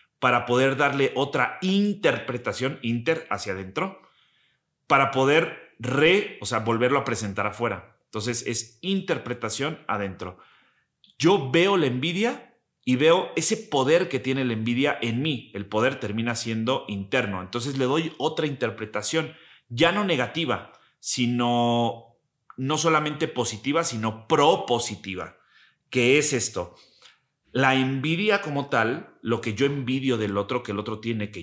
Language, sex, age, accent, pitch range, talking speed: Spanish, male, 30-49, Mexican, 110-140 Hz, 135 wpm